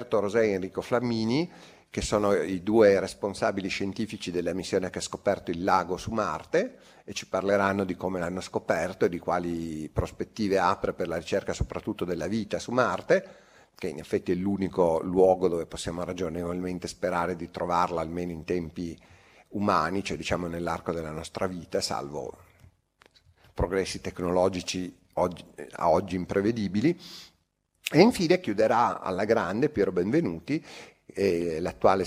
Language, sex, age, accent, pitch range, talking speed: Italian, male, 40-59, native, 90-105 Hz, 140 wpm